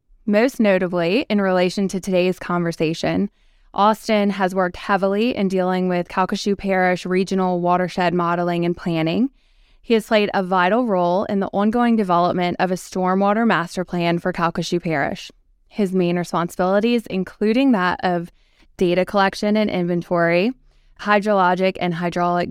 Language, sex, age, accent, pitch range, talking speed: English, female, 20-39, American, 175-200 Hz, 140 wpm